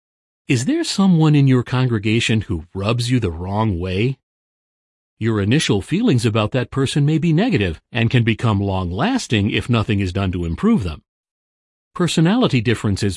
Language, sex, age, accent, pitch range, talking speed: English, male, 40-59, American, 100-145 Hz, 155 wpm